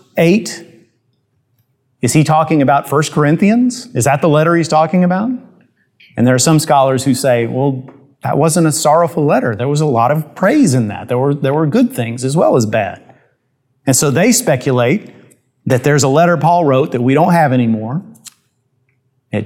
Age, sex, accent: 40-59, male, American